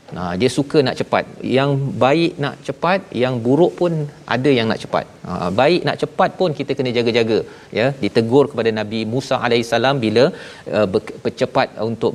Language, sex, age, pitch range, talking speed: Malayalam, male, 40-59, 120-150 Hz, 170 wpm